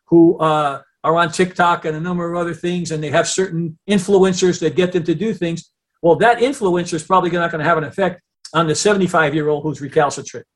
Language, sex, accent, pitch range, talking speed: English, male, American, 160-195 Hz, 215 wpm